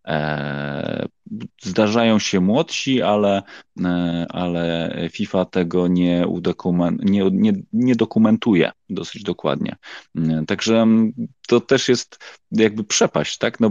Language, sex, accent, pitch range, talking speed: Polish, male, native, 85-105 Hz, 95 wpm